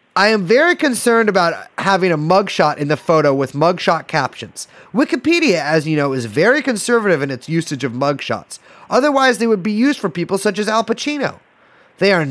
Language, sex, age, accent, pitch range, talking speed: English, male, 30-49, American, 150-215 Hz, 190 wpm